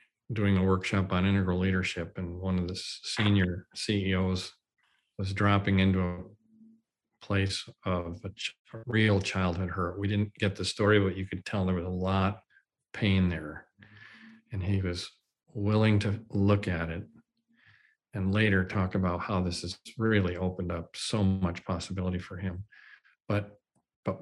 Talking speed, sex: 155 wpm, male